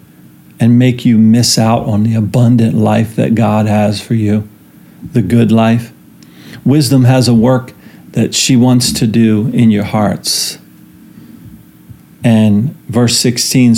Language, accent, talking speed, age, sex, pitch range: English, American, 140 wpm, 40-59, male, 110-125 Hz